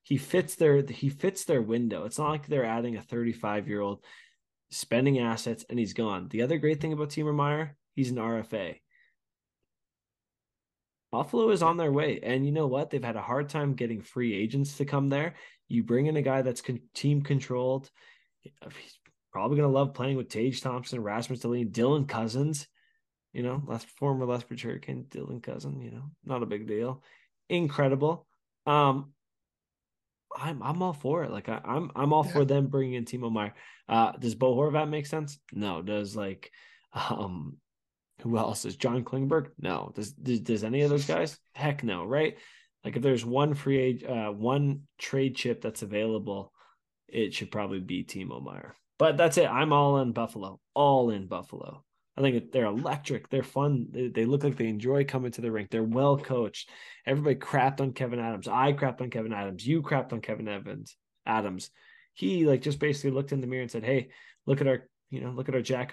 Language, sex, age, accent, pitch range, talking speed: English, male, 20-39, American, 115-140 Hz, 195 wpm